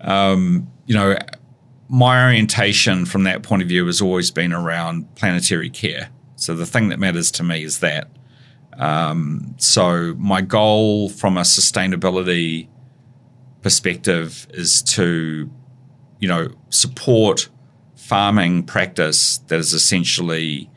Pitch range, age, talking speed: 85-125 Hz, 40-59, 125 wpm